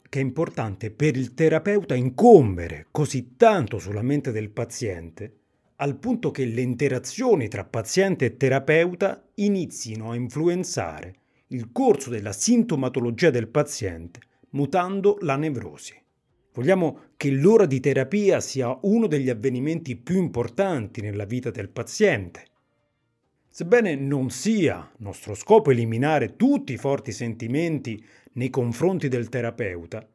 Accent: native